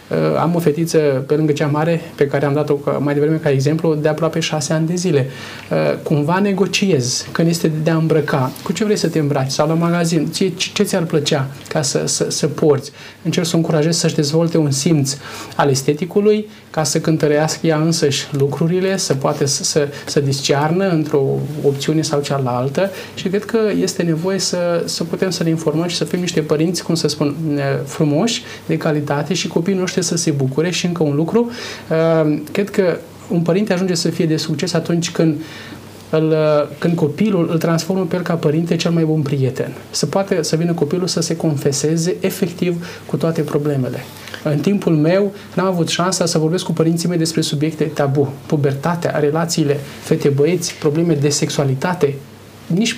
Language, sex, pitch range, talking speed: Romanian, male, 145-175 Hz, 180 wpm